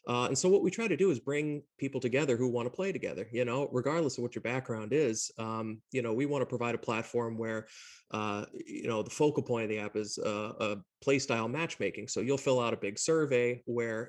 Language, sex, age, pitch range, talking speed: English, male, 30-49, 110-135 Hz, 245 wpm